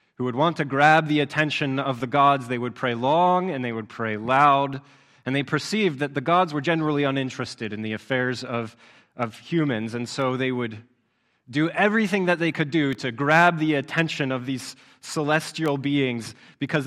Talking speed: 190 wpm